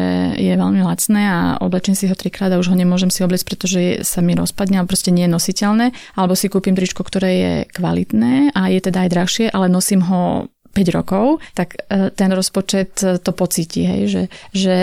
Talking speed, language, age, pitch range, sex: 195 wpm, Slovak, 30-49, 180-195 Hz, female